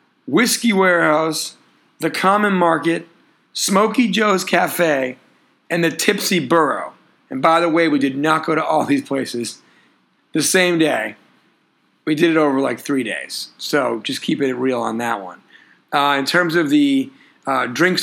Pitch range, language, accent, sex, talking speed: 145-175 Hz, English, American, male, 165 wpm